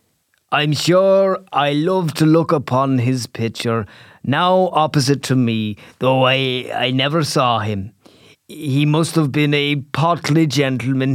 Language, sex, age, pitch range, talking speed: English, male, 30-49, 130-160 Hz, 140 wpm